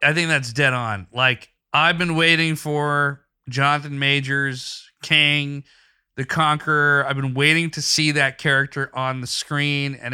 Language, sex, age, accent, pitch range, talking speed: English, male, 30-49, American, 135-170 Hz, 155 wpm